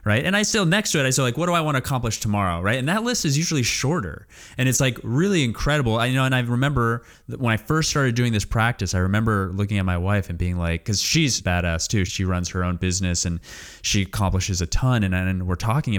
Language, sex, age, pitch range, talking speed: English, male, 20-39, 90-120 Hz, 265 wpm